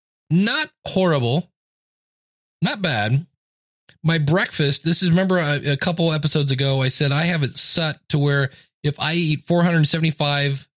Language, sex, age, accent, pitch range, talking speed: English, male, 30-49, American, 120-160 Hz, 145 wpm